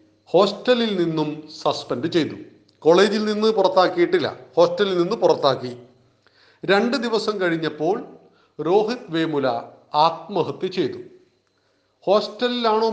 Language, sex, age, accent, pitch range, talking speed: Malayalam, male, 40-59, native, 155-210 Hz, 85 wpm